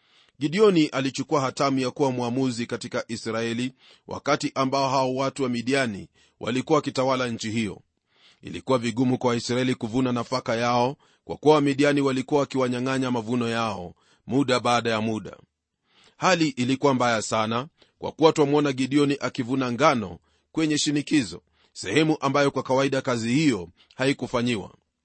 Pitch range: 125-145 Hz